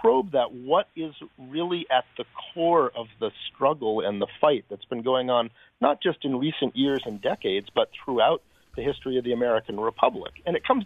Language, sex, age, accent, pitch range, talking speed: English, male, 50-69, American, 120-155 Hz, 200 wpm